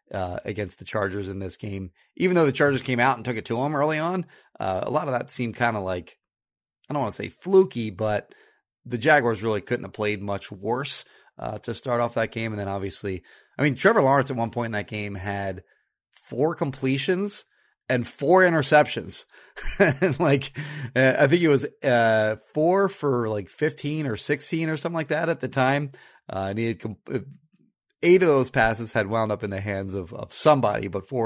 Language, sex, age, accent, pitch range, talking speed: English, male, 30-49, American, 110-150 Hz, 210 wpm